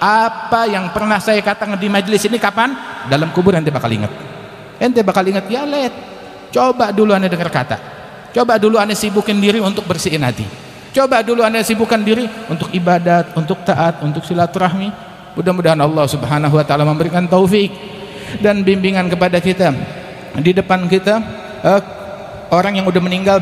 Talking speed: 160 wpm